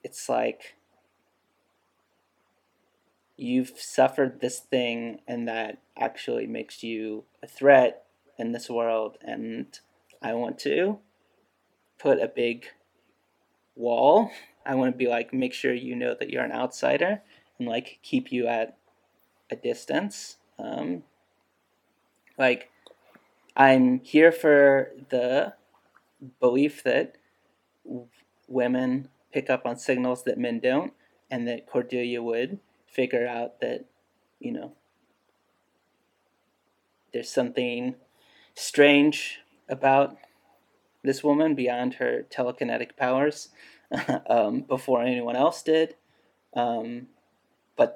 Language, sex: English, male